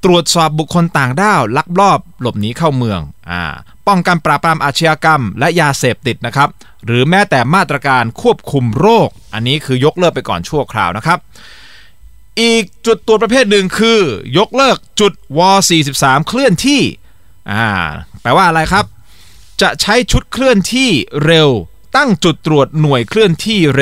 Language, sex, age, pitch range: Thai, male, 20-39, 120-185 Hz